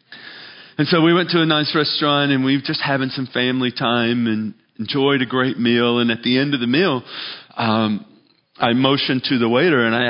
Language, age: English, 40-59